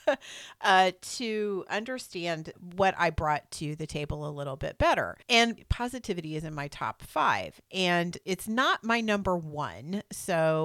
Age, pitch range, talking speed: 40-59, 150-200 Hz, 150 wpm